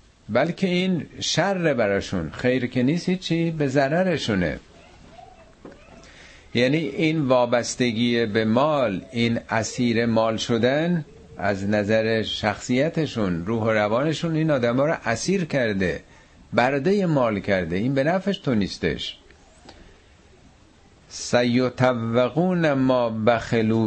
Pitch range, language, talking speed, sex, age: 95-125 Hz, Persian, 100 wpm, male, 50-69